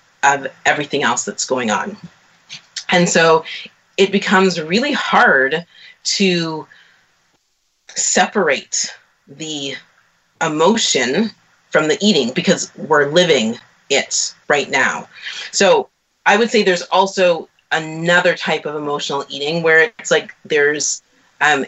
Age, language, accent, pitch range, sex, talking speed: 30-49, English, American, 155-195 Hz, female, 115 wpm